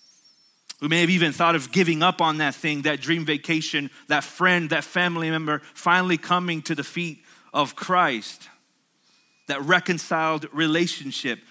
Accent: American